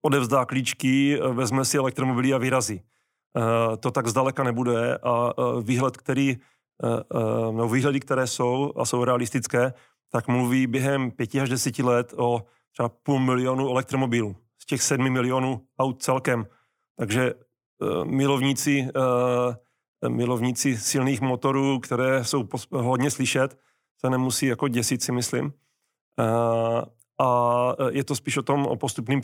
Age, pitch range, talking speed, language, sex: 40-59, 125-140 Hz, 125 wpm, Czech, male